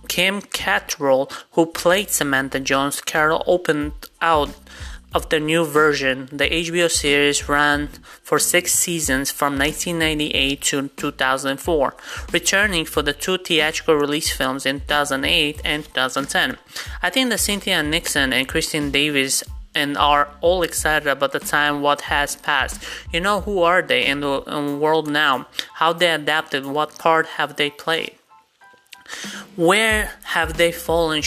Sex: male